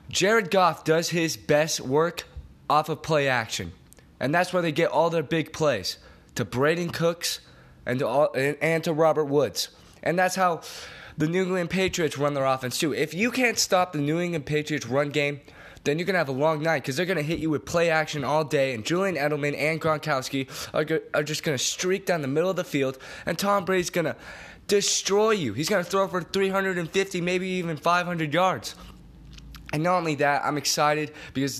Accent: American